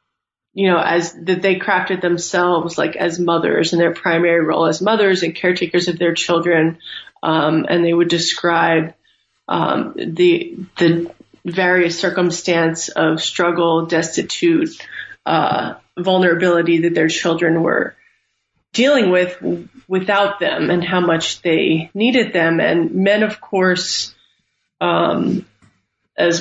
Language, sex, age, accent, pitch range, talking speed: English, female, 20-39, American, 170-190 Hz, 125 wpm